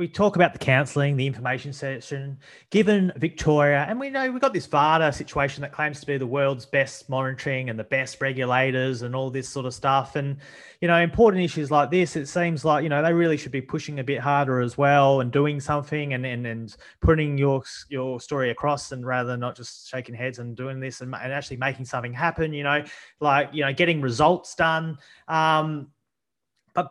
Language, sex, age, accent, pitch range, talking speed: English, male, 30-49, Australian, 130-160 Hz, 210 wpm